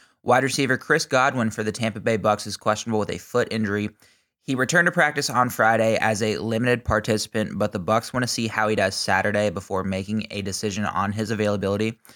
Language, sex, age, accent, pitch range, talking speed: English, male, 20-39, American, 100-120 Hz, 205 wpm